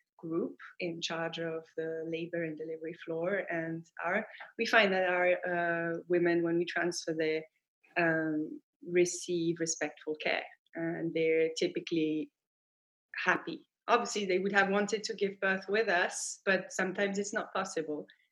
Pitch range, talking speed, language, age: 165-210 Hz, 145 wpm, English, 20-39